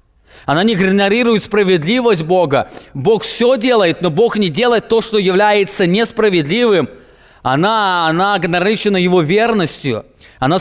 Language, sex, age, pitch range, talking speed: English, male, 20-39, 145-195 Hz, 125 wpm